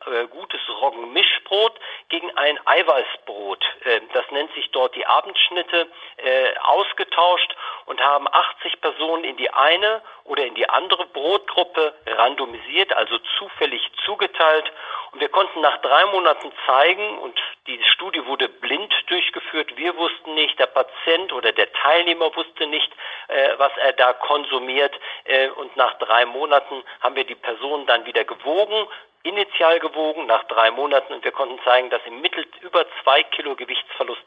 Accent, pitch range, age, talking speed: German, 125-165 Hz, 50-69, 145 wpm